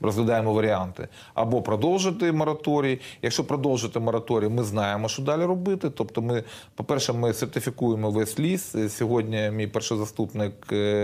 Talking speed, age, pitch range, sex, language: 130 wpm, 30-49, 110-130 Hz, male, Ukrainian